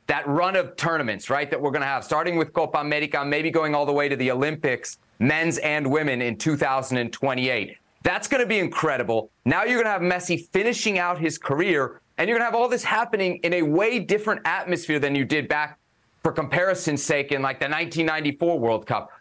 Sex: male